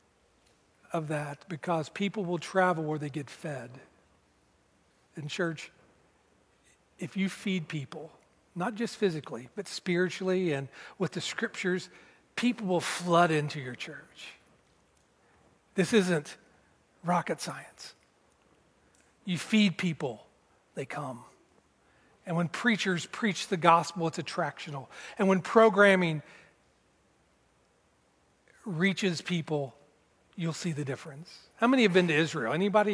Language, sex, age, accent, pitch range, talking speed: English, male, 40-59, American, 155-195 Hz, 115 wpm